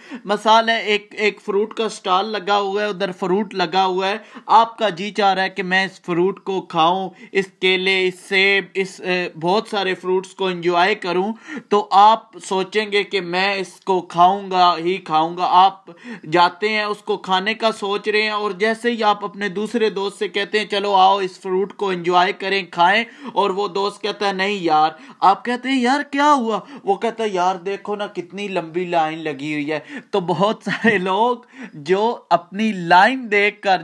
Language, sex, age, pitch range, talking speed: Urdu, male, 20-39, 190-220 Hz, 200 wpm